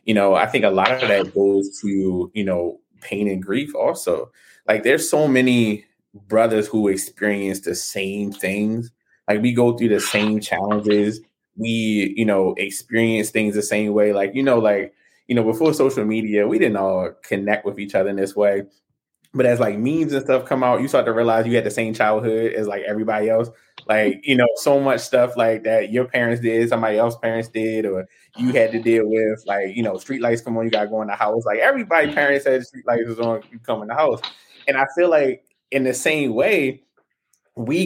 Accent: American